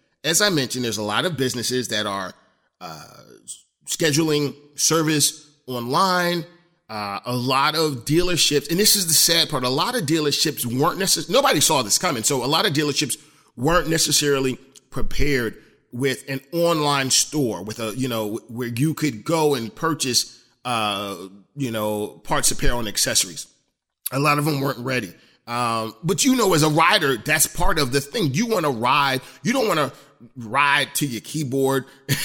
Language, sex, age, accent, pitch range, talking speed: English, male, 30-49, American, 125-160 Hz, 175 wpm